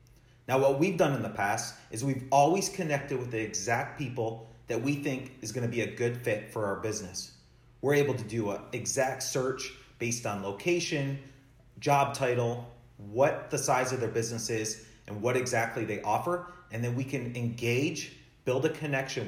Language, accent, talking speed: English, American, 185 wpm